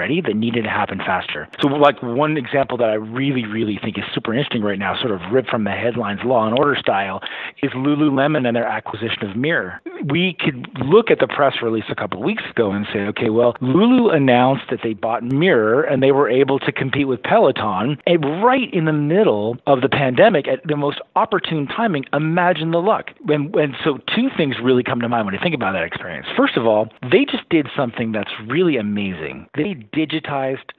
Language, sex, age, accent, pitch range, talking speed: English, male, 40-59, American, 115-150 Hz, 210 wpm